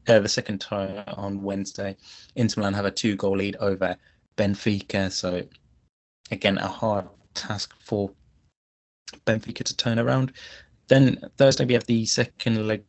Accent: British